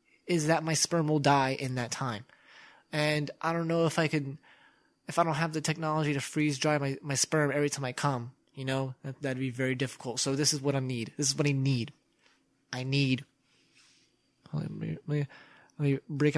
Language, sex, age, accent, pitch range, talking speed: English, male, 20-39, American, 140-205 Hz, 215 wpm